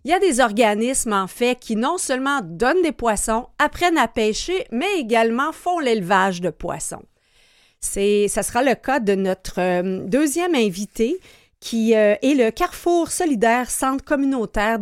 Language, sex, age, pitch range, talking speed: French, female, 40-59, 205-270 Hz, 150 wpm